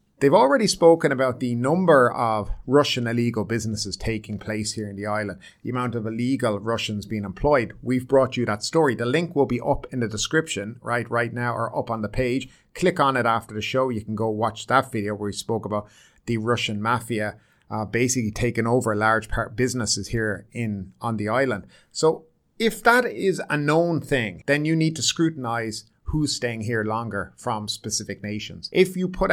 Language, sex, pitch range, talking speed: English, male, 105-135 Hz, 200 wpm